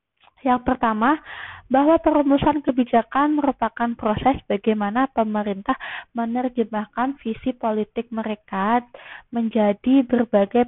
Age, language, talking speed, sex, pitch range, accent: 20-39, Indonesian, 85 wpm, female, 215-250 Hz, native